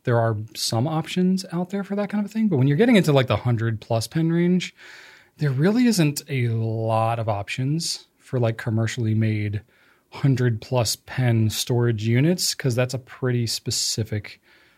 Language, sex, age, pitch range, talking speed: English, male, 30-49, 110-140 Hz, 175 wpm